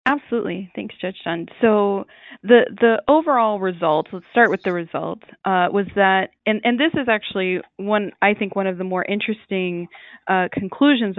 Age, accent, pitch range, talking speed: 20-39, American, 180-215 Hz, 170 wpm